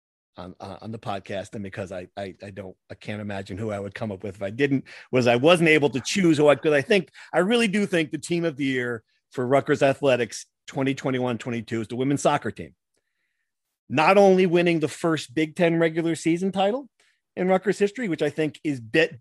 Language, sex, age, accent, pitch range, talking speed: English, male, 40-59, American, 120-165 Hz, 220 wpm